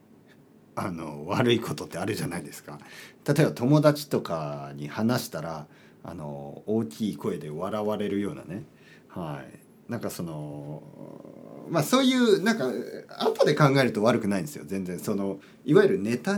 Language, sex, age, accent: Japanese, male, 40-59, native